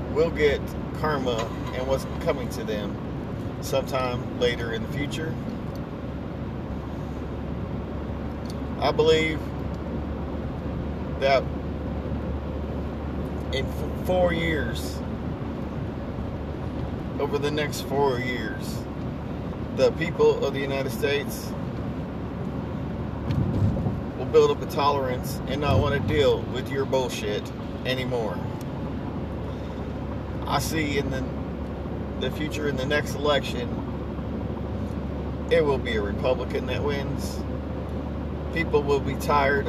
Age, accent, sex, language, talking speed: 40-59, American, male, English, 100 wpm